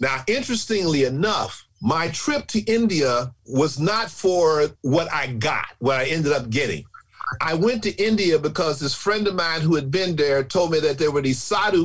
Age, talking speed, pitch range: 50-69, 190 wpm, 125-170 Hz